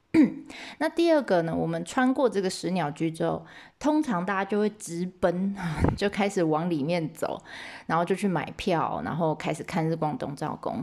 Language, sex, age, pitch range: Chinese, female, 20-39, 170-235 Hz